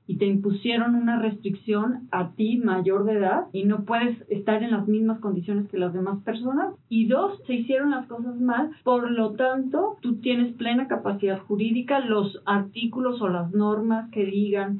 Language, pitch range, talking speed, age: Spanish, 200-250 Hz, 180 wpm, 40-59